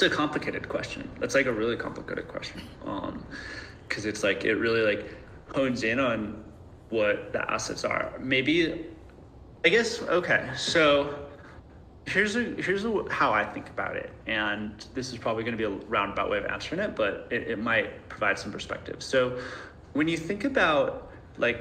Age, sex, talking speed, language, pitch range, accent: 20-39, male, 175 wpm, English, 105-135 Hz, American